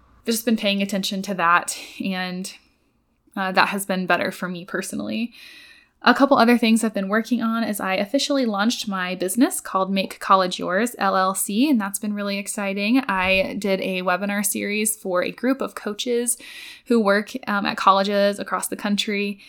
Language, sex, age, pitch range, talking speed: English, female, 10-29, 190-240 Hz, 175 wpm